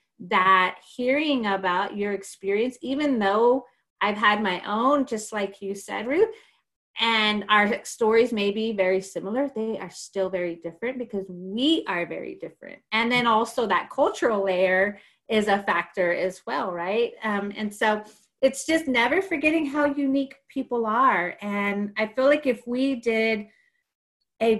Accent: American